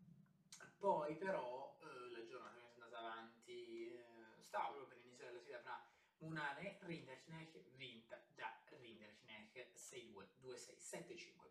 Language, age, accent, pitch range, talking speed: Italian, 20-39, native, 130-205 Hz, 110 wpm